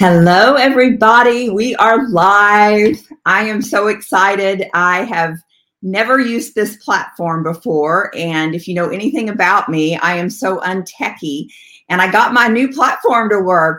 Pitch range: 180-225 Hz